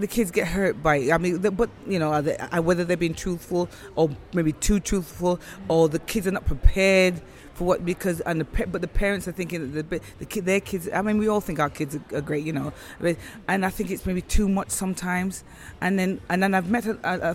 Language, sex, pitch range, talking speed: English, female, 160-190 Hz, 230 wpm